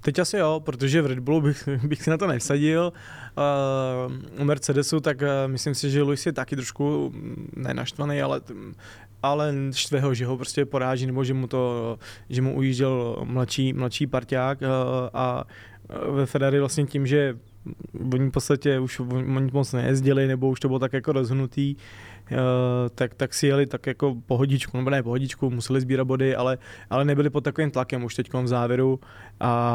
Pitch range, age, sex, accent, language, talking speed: 120-135 Hz, 20-39, male, native, Czech, 175 wpm